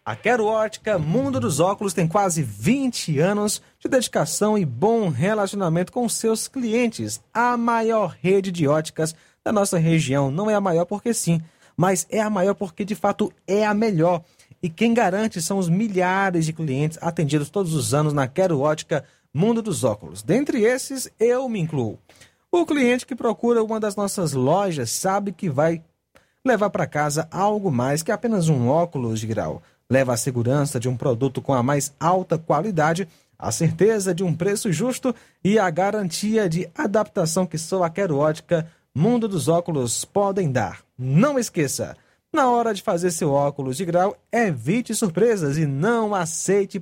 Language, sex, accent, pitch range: Portuguese, male, Brazilian, 150-215 Hz